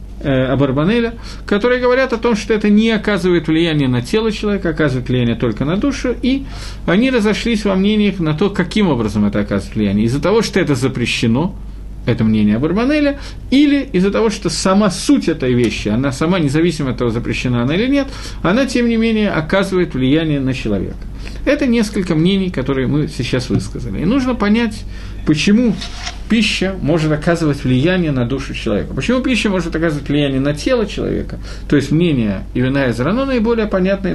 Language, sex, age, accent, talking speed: Russian, male, 50-69, native, 170 wpm